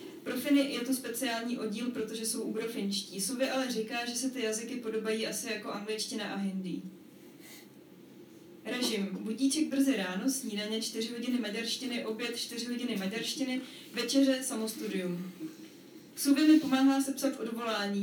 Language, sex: Czech, female